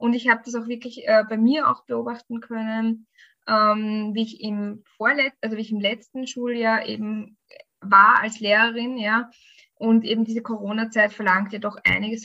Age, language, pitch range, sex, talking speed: 20-39, German, 215-240 Hz, female, 175 wpm